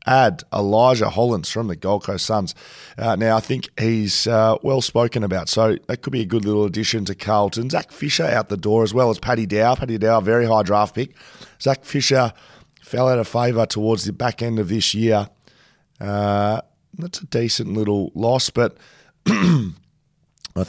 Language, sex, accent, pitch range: English, male, Australian, 105-120 Hz